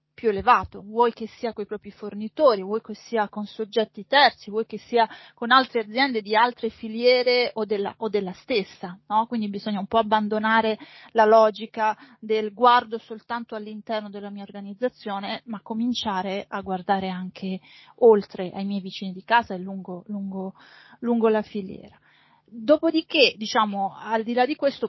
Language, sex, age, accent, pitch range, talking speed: Italian, female, 30-49, native, 200-235 Hz, 160 wpm